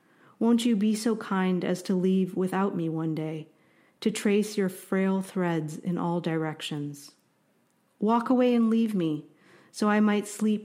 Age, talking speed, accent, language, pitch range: 40-59, 165 wpm, American, English, 170-210 Hz